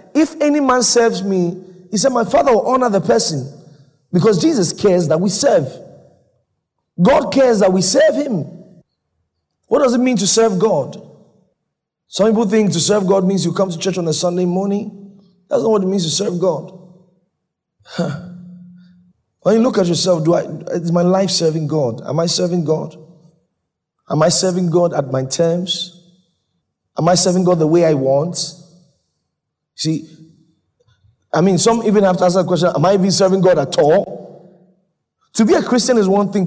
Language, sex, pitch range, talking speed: English, male, 160-200 Hz, 180 wpm